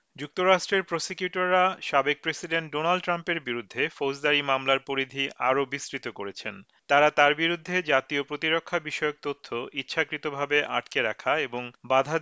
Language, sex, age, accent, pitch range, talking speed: Bengali, male, 40-59, native, 135-165 Hz, 125 wpm